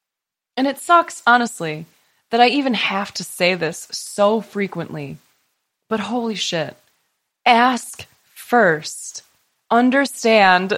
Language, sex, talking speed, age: English, female, 105 wpm, 20-39